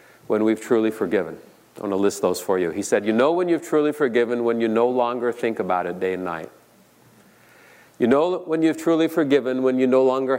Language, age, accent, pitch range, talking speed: English, 50-69, American, 110-145 Hz, 220 wpm